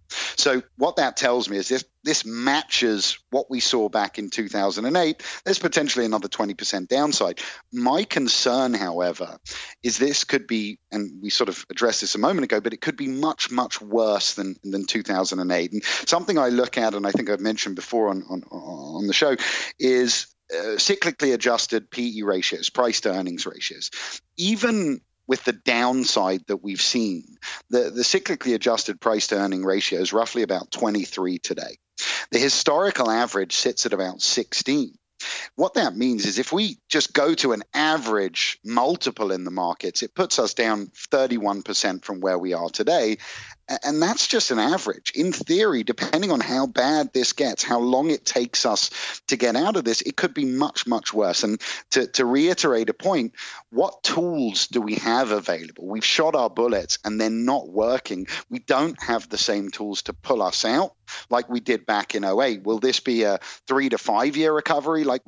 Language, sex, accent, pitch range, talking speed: English, male, British, 100-135 Hz, 180 wpm